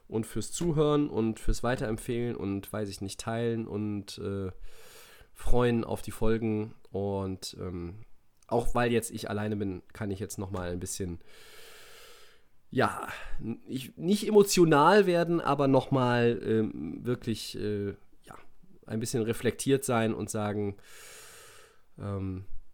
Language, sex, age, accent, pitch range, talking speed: German, male, 20-39, German, 105-135 Hz, 120 wpm